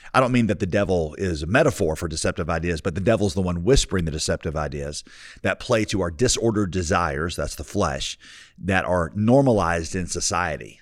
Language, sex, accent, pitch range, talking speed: English, male, American, 85-105 Hz, 200 wpm